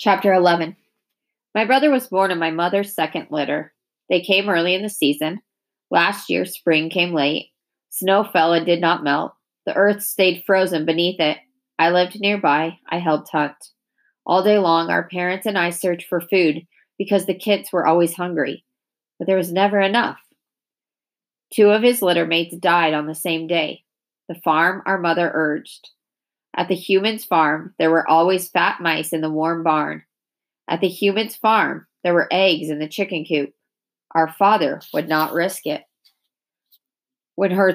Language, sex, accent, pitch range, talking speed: English, female, American, 160-195 Hz, 170 wpm